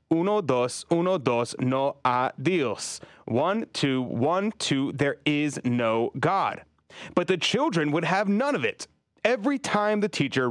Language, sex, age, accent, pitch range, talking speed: English, male, 30-49, American, 115-165 Hz, 150 wpm